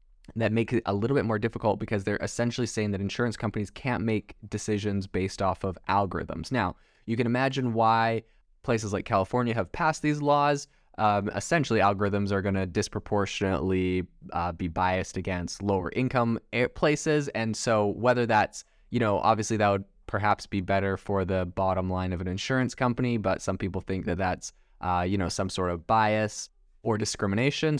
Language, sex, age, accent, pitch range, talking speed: English, male, 20-39, American, 100-120 Hz, 175 wpm